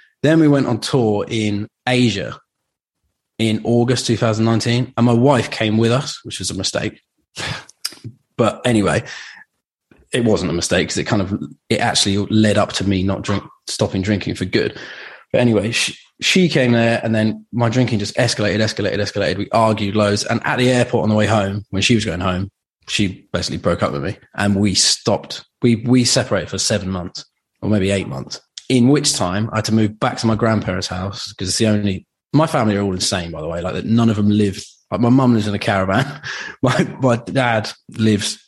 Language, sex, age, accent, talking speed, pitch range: English, male, 20-39, British, 205 wpm, 100-120 Hz